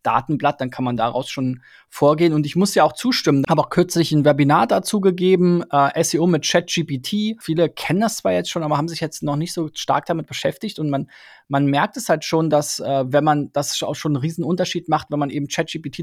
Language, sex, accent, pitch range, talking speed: German, male, German, 140-165 Hz, 230 wpm